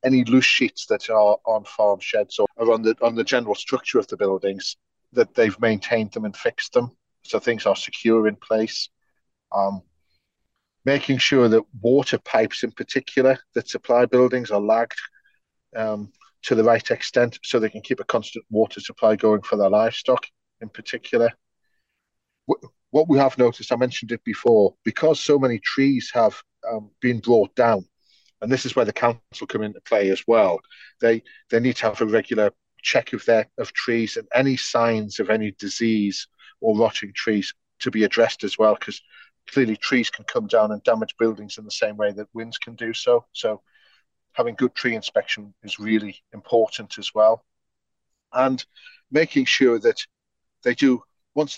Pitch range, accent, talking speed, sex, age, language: 110-135 Hz, British, 175 wpm, male, 40-59, English